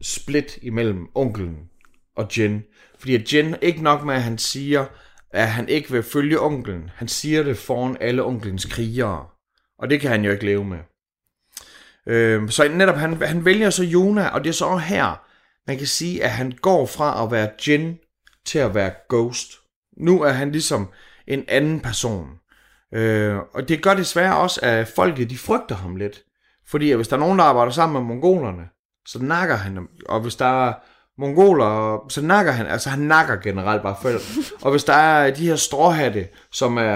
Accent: native